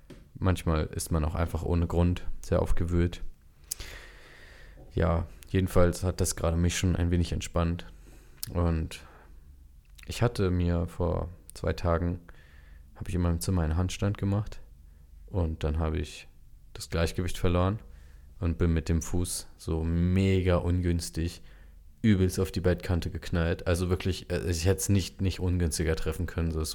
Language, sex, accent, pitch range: German, male, German, 80-90 Hz